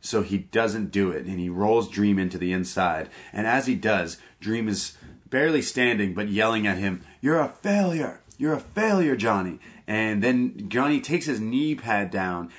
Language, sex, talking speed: English, male, 185 wpm